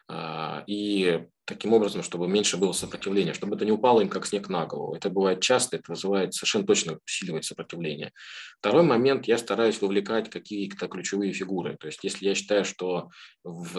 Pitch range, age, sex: 90-105 Hz, 20-39, male